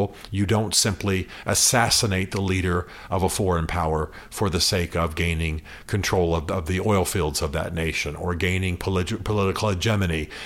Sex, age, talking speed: male, 50-69, 160 wpm